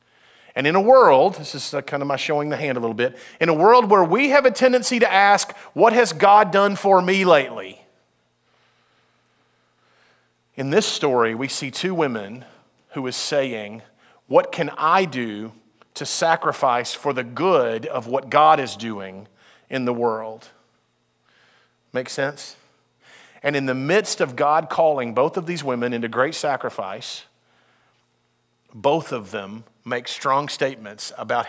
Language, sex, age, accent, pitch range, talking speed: English, male, 40-59, American, 130-190 Hz, 155 wpm